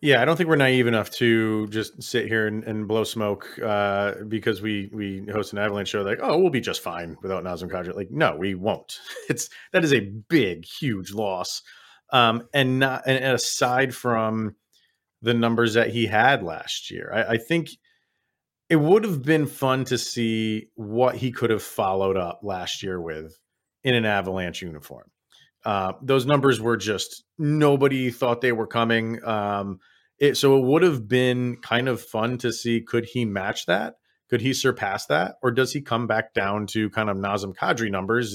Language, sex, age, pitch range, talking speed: English, male, 30-49, 105-135 Hz, 190 wpm